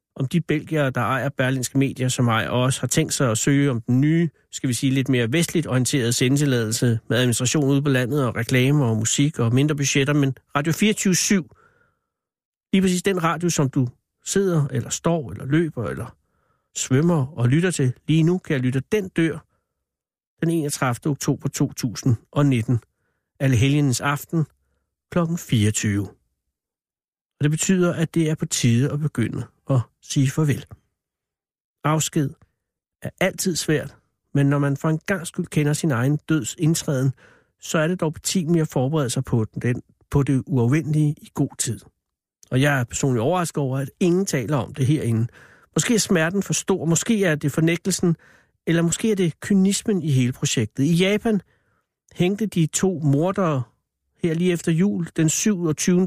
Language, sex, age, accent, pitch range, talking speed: Danish, male, 60-79, native, 130-170 Hz, 170 wpm